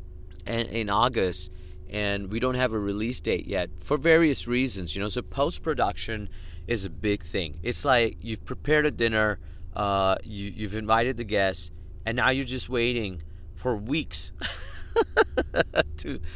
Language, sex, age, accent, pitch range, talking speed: English, male, 40-59, American, 90-130 Hz, 145 wpm